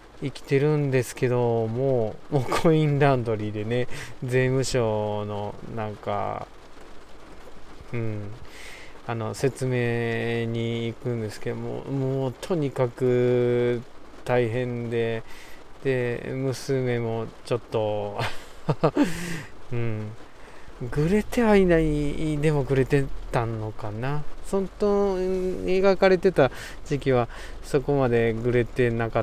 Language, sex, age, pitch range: Japanese, male, 20-39, 115-140 Hz